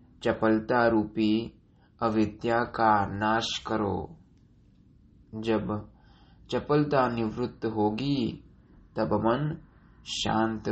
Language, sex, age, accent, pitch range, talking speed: Hindi, male, 20-39, native, 105-120 Hz, 75 wpm